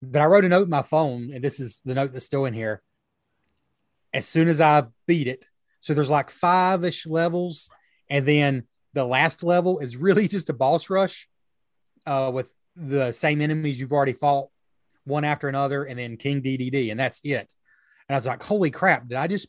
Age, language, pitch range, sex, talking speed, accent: 30-49, English, 125-160 Hz, male, 205 wpm, American